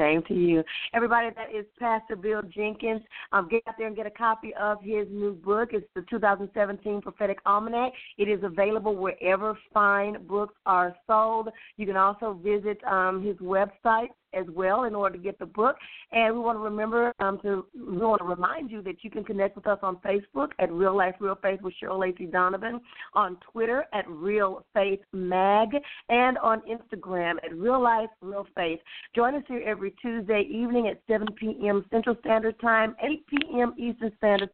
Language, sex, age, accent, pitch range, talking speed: English, female, 40-59, American, 190-225 Hz, 185 wpm